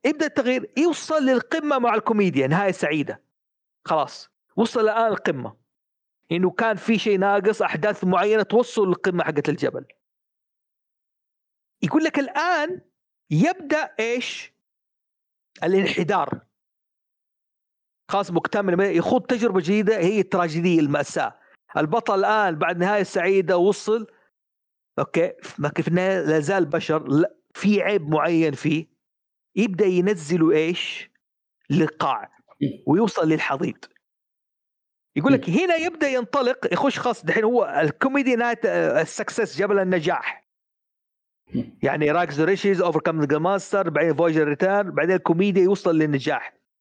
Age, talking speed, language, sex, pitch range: 50-69, 110 wpm, Arabic, male, 170-230 Hz